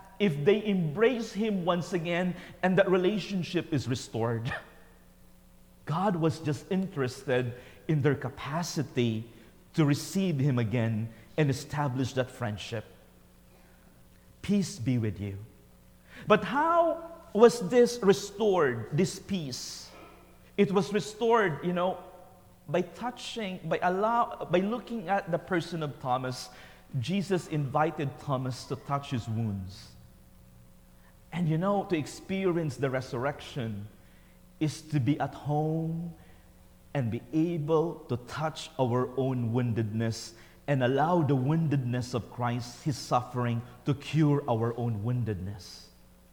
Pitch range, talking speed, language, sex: 120-180 Hz, 120 wpm, English, male